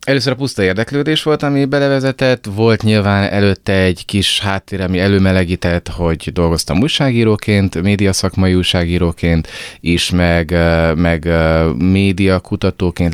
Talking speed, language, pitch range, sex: 115 wpm, Hungarian, 85-110 Hz, male